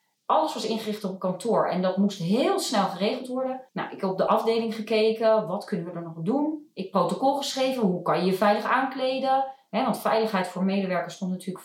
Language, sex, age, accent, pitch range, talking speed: Dutch, female, 30-49, Dutch, 185-265 Hz, 220 wpm